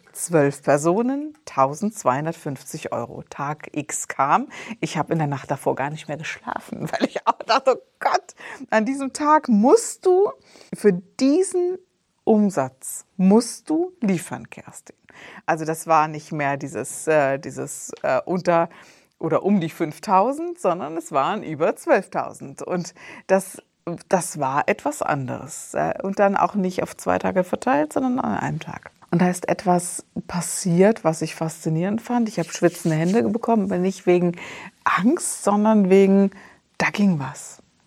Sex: female